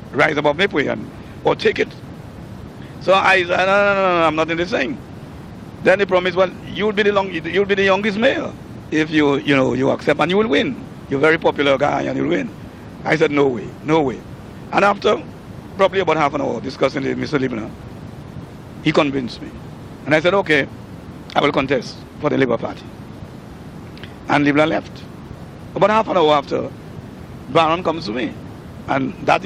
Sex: male